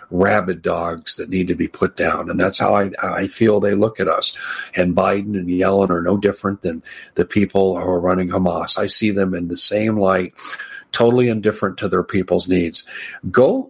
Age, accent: 50-69, American